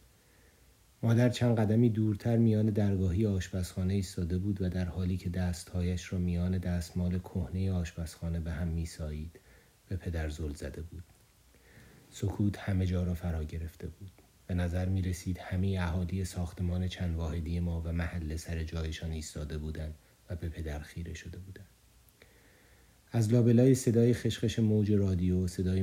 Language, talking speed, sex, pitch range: Persian, 145 wpm, male, 85-95 Hz